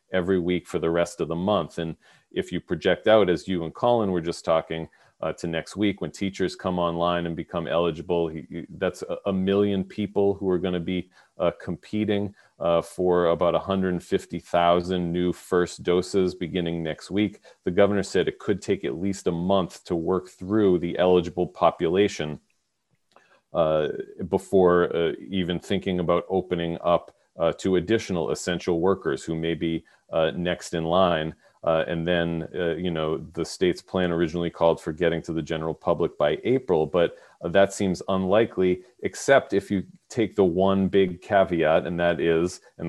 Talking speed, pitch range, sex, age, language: 175 wpm, 85-95 Hz, male, 40-59, English